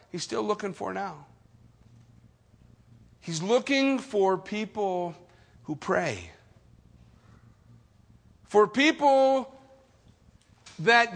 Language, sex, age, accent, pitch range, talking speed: English, male, 50-69, American, 195-255 Hz, 75 wpm